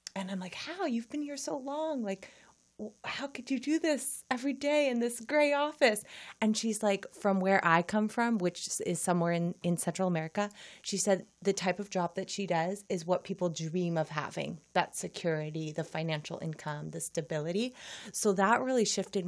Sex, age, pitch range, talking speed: female, 30-49, 165-205 Hz, 195 wpm